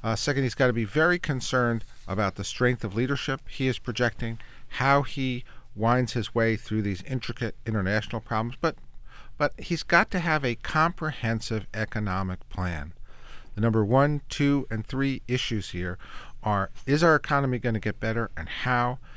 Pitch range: 110-135 Hz